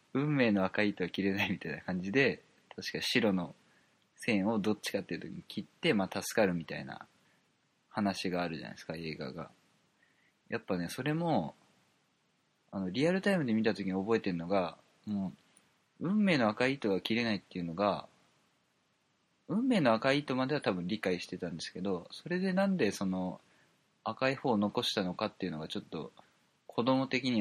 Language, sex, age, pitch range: Japanese, male, 20-39, 95-125 Hz